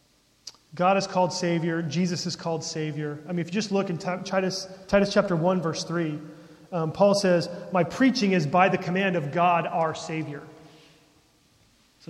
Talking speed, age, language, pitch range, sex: 170 wpm, 30-49, English, 150-185 Hz, male